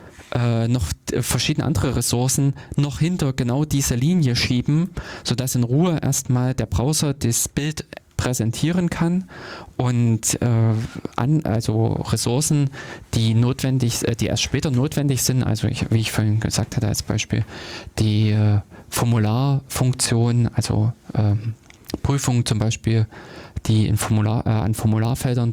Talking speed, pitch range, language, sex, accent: 135 wpm, 110-125 Hz, German, male, German